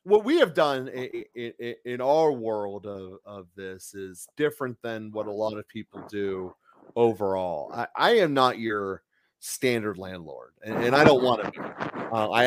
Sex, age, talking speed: male, 30-49, 180 wpm